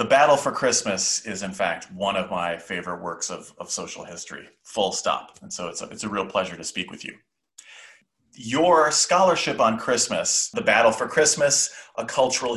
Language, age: English, 30-49